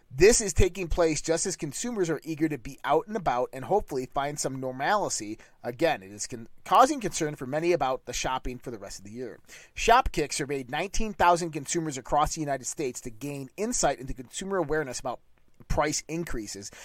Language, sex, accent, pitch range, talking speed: English, male, American, 130-170 Hz, 185 wpm